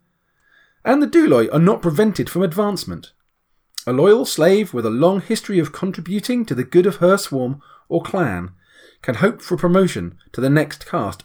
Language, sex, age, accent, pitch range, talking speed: English, male, 30-49, British, 120-195 Hz, 175 wpm